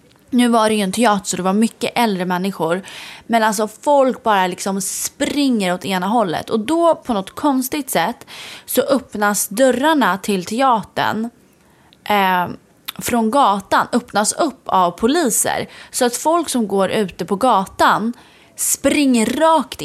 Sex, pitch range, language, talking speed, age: female, 190-250 Hz, Swedish, 150 wpm, 20-39